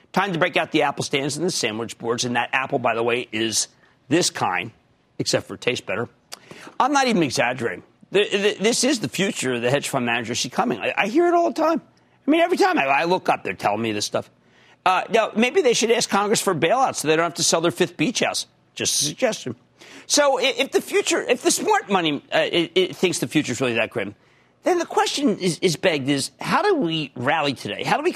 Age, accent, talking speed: 50-69, American, 245 wpm